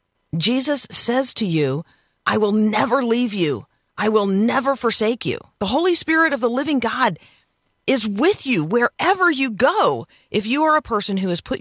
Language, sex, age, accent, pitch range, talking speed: English, female, 40-59, American, 170-245 Hz, 180 wpm